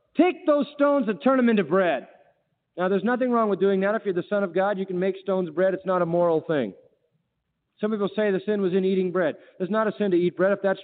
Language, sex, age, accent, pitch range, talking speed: English, male, 40-59, American, 180-285 Hz, 270 wpm